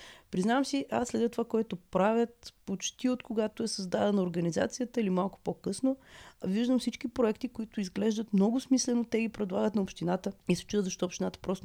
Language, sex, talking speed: Bulgarian, female, 175 wpm